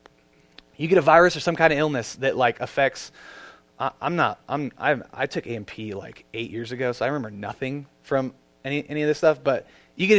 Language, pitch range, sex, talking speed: English, 105-160 Hz, male, 220 wpm